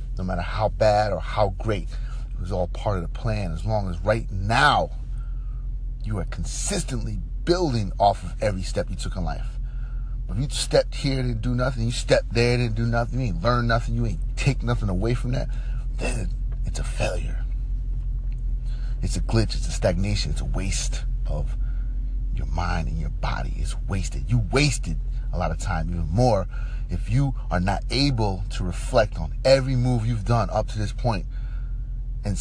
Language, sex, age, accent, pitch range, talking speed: English, male, 30-49, American, 95-125 Hz, 195 wpm